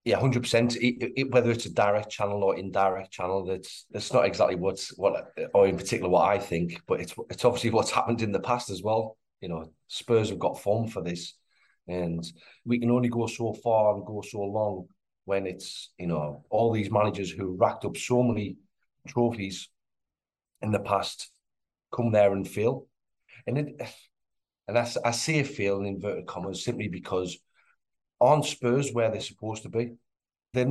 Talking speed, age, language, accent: 190 wpm, 30-49, English, British